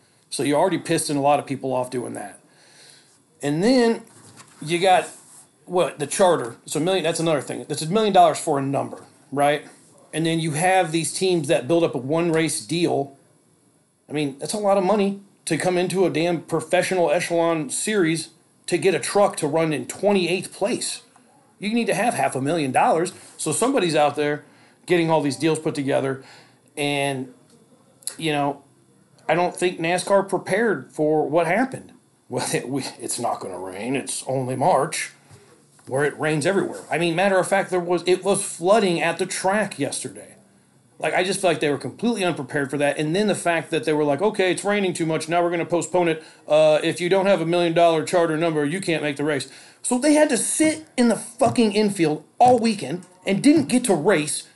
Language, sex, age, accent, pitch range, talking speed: English, male, 40-59, American, 150-190 Hz, 200 wpm